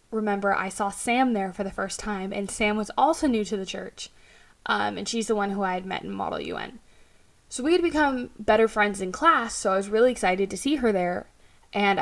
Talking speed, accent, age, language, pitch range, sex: 235 wpm, American, 10-29, English, 195-235 Hz, female